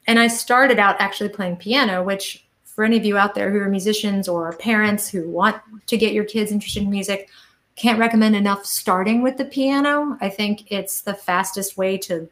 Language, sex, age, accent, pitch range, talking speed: English, female, 30-49, American, 190-240 Hz, 205 wpm